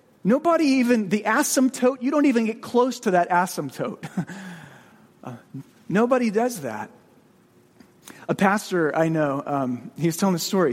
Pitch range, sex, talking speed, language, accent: 160-235 Hz, male, 145 wpm, English, American